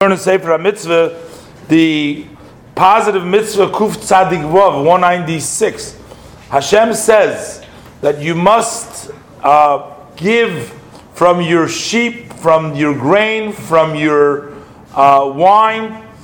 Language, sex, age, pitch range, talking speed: English, male, 40-59, 165-205 Hz, 100 wpm